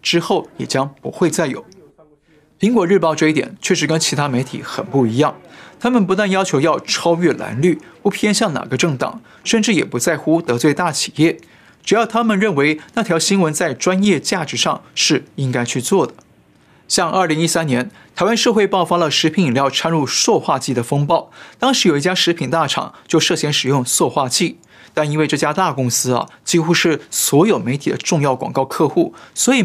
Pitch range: 135-185 Hz